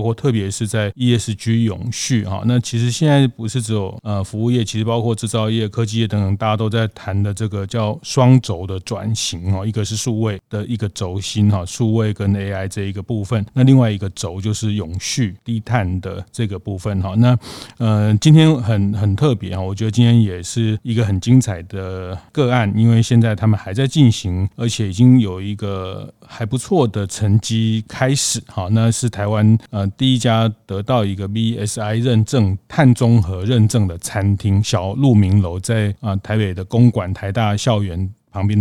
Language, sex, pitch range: Chinese, male, 100-120 Hz